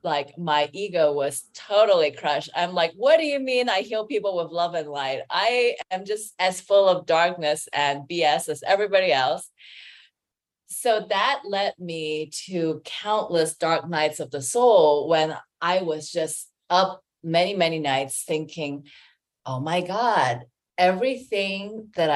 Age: 30-49